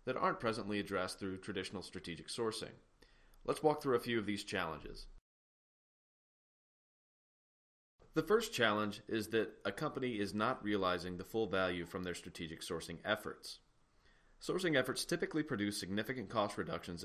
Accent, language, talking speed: American, English, 145 wpm